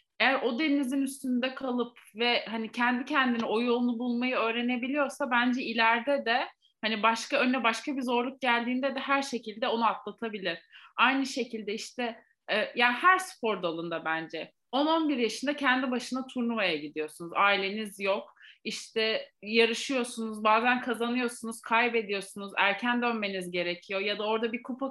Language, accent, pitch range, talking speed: Turkish, native, 205-255 Hz, 140 wpm